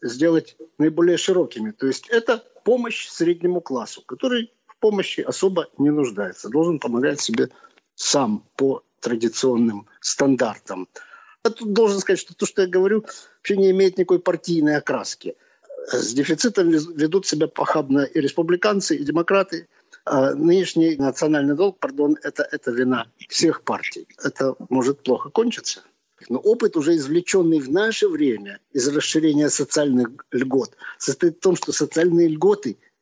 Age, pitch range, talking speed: 50-69, 145-200 Hz, 140 wpm